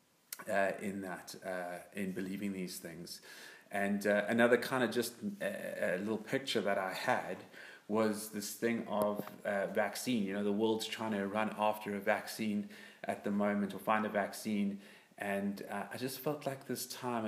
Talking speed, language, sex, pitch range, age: 180 wpm, English, male, 100-115 Hz, 30-49